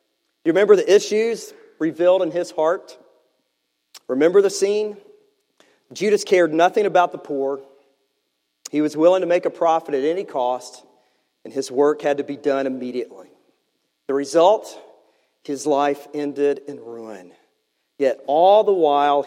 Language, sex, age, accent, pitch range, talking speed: English, male, 40-59, American, 145-180 Hz, 145 wpm